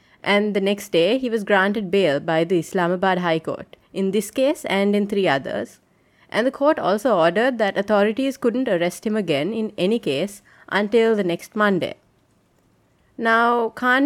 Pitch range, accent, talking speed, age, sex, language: 185-235 Hz, Indian, 170 wpm, 30-49, female, English